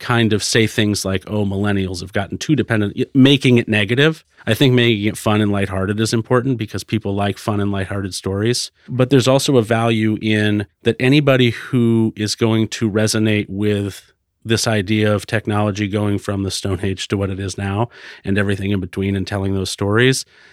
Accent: American